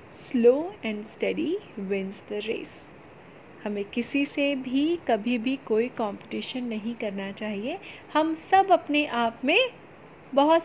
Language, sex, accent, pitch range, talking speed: Hindi, female, native, 220-290 Hz, 130 wpm